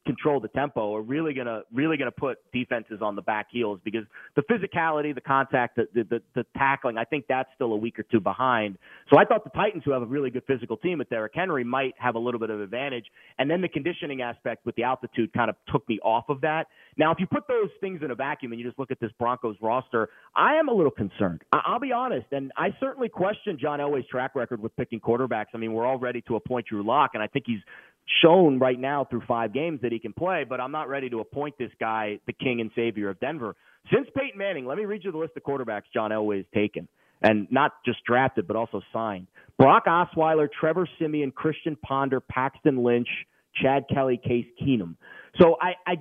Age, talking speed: 30-49, 235 wpm